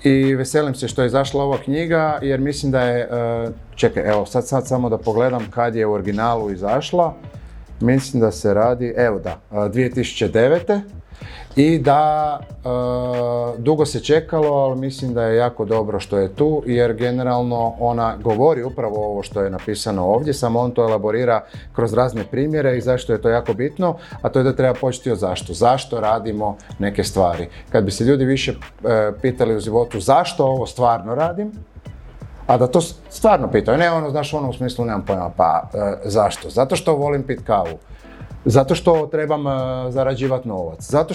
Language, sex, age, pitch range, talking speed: English, male, 30-49, 115-140 Hz, 180 wpm